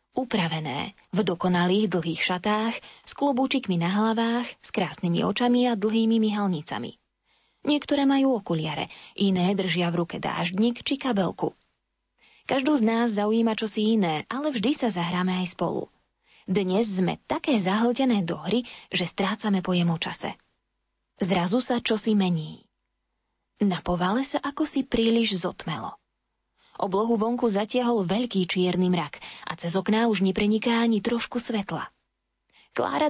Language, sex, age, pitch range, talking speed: Slovak, female, 20-39, 180-235 Hz, 130 wpm